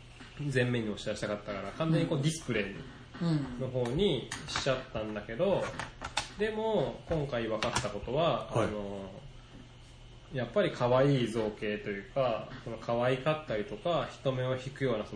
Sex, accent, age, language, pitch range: male, native, 20-39, Japanese, 110-140 Hz